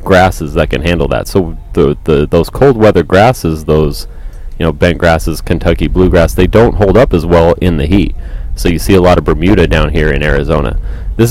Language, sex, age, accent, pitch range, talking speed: English, male, 30-49, American, 85-105 Hz, 210 wpm